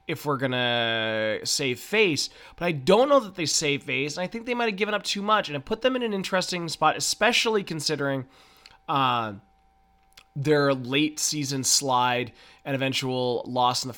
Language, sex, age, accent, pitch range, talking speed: English, male, 20-39, American, 135-180 Hz, 185 wpm